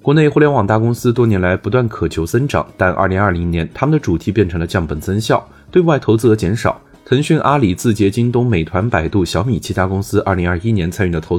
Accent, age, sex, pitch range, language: native, 20-39, male, 90-130 Hz, Chinese